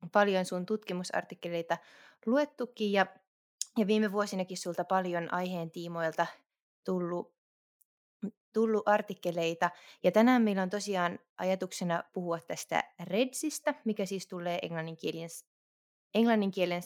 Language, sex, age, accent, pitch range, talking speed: Finnish, female, 20-39, native, 175-210 Hz, 95 wpm